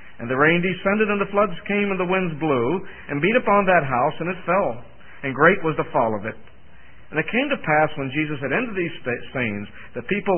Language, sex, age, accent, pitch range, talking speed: English, male, 50-69, American, 150-215 Hz, 230 wpm